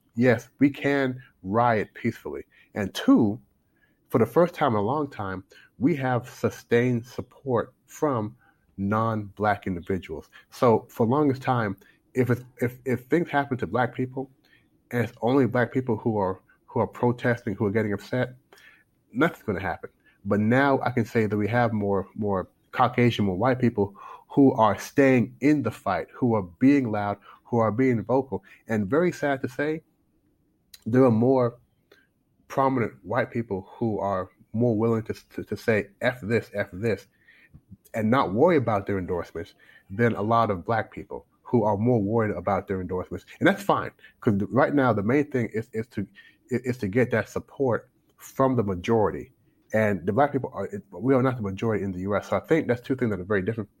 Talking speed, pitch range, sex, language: 190 wpm, 105-130 Hz, male, English